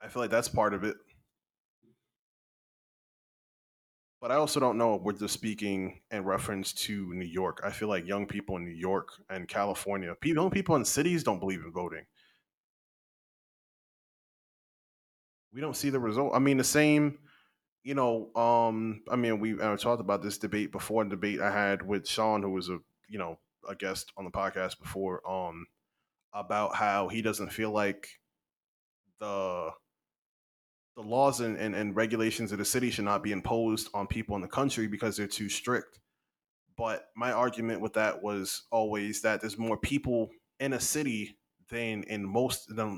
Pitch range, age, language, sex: 100-120 Hz, 20-39, English, male